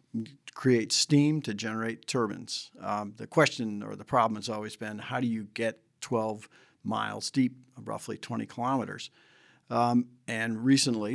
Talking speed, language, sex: 145 wpm, English, male